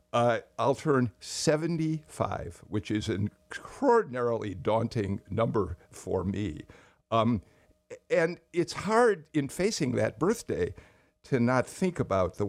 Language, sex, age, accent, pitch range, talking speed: English, male, 60-79, American, 105-145 Hz, 120 wpm